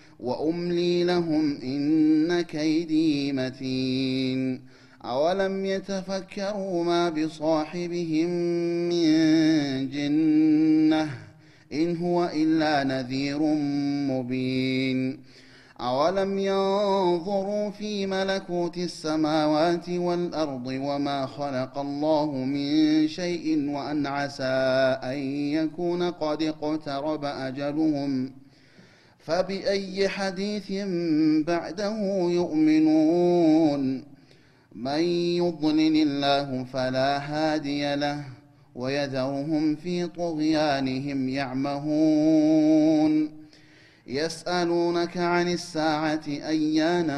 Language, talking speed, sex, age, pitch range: Amharic, 65 wpm, male, 30-49, 140-175 Hz